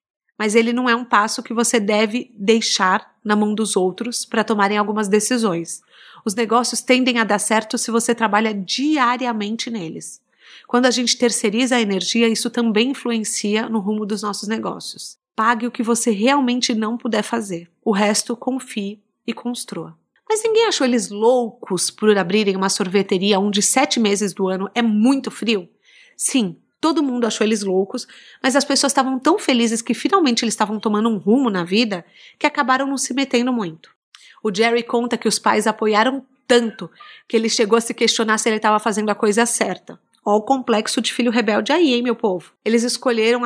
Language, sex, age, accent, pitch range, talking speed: Portuguese, female, 30-49, Brazilian, 215-250 Hz, 185 wpm